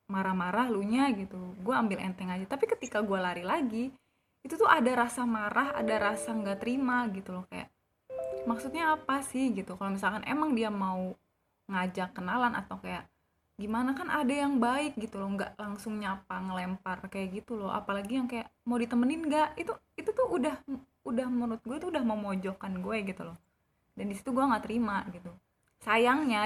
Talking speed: 175 wpm